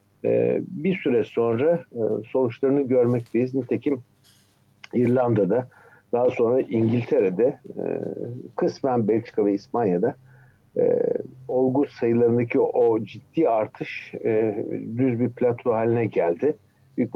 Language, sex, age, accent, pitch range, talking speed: Turkish, male, 50-69, native, 115-185 Hz, 110 wpm